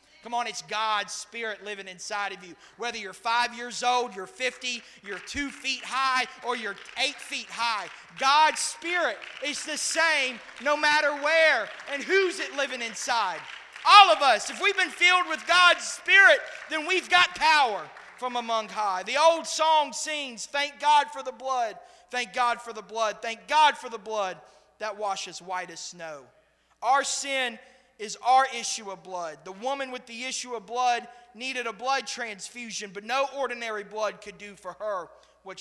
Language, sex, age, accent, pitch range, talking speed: English, male, 30-49, American, 200-270 Hz, 180 wpm